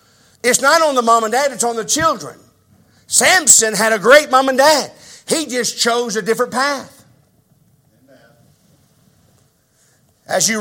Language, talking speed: English, 145 wpm